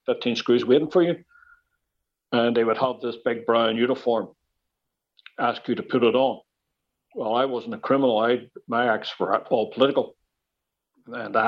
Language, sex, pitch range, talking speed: English, male, 115-125 Hz, 160 wpm